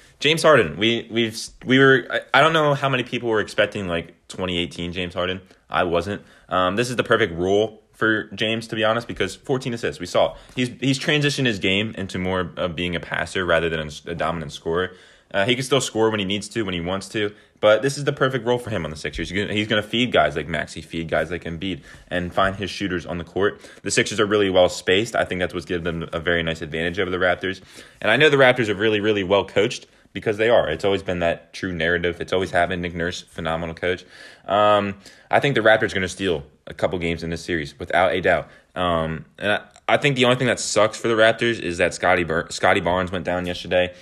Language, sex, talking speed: English, male, 240 wpm